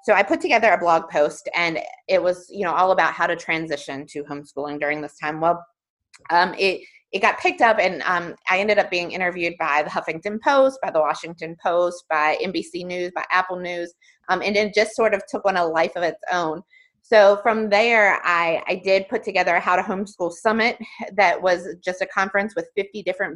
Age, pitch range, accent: 30-49, 175-225 Hz, American